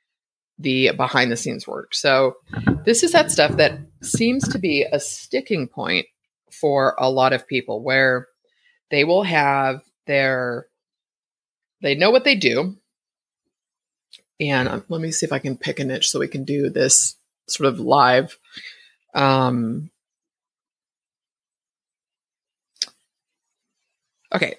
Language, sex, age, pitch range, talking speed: English, female, 30-49, 130-175 Hz, 125 wpm